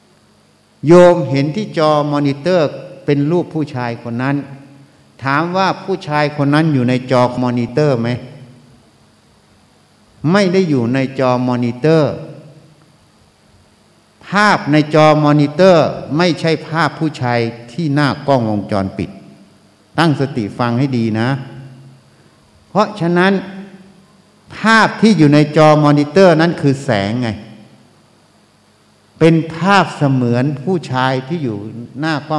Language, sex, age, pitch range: Thai, male, 60-79, 125-165 Hz